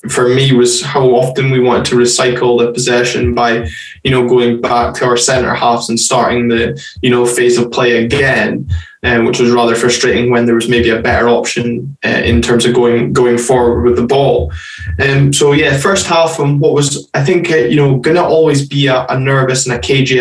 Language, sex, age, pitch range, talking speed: English, male, 10-29, 120-140 Hz, 225 wpm